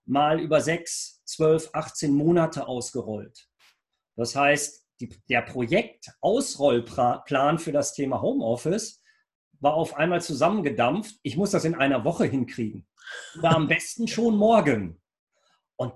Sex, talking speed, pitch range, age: male, 130 wpm, 145-185 Hz, 40-59